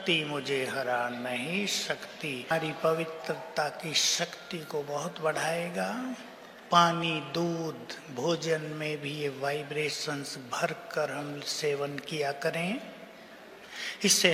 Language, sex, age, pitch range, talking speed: Hindi, male, 60-79, 150-205 Hz, 100 wpm